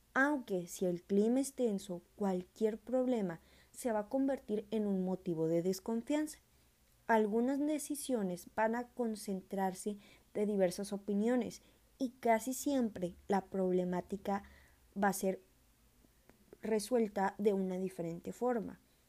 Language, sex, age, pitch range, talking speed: Spanish, female, 20-39, 195-245 Hz, 120 wpm